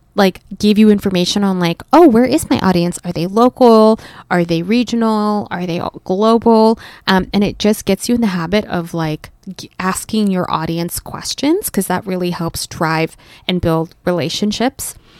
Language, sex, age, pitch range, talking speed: English, female, 20-39, 180-230 Hz, 175 wpm